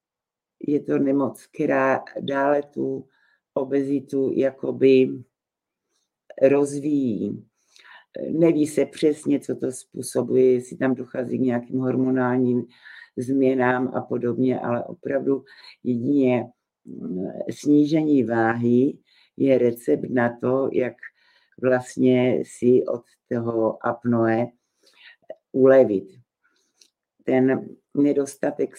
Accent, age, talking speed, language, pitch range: native, 60-79, 90 wpm, Czech, 125-140 Hz